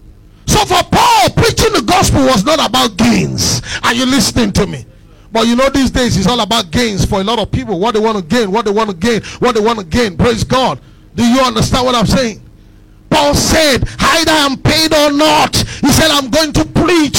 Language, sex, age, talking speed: English, male, 50-69, 230 wpm